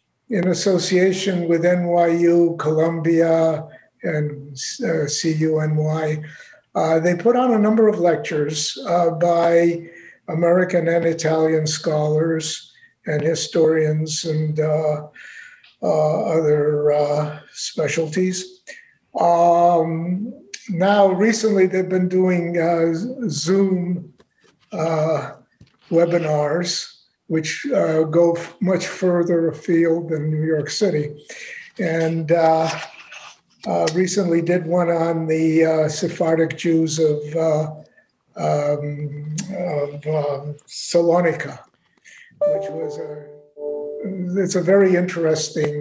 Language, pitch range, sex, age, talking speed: English, 155-180 Hz, male, 60-79, 95 wpm